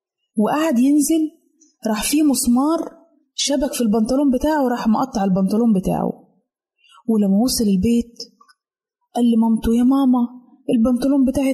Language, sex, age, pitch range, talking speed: Arabic, female, 20-39, 215-265 Hz, 115 wpm